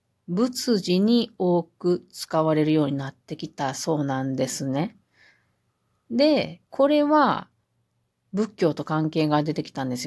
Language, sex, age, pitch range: Japanese, female, 40-59, 150-225 Hz